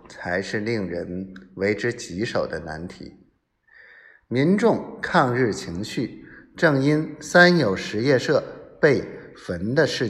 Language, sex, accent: Chinese, male, native